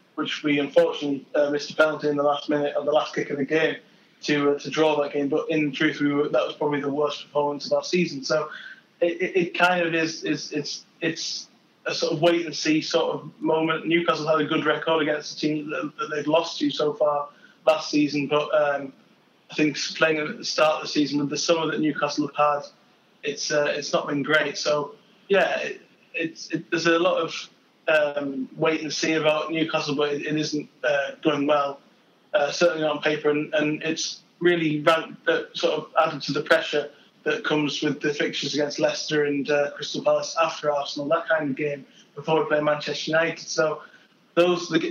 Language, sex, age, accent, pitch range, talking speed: English, male, 20-39, British, 145-160 Hz, 210 wpm